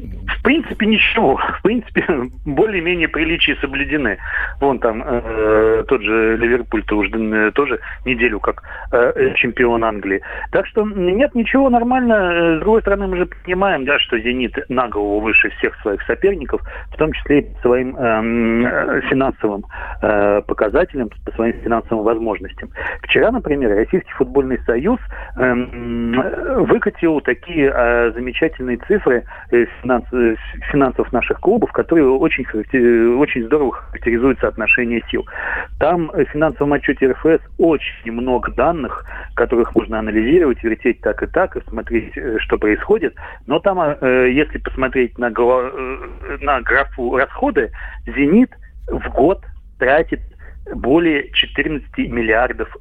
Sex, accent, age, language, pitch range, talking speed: male, native, 40-59, Russian, 115-160 Hz, 125 wpm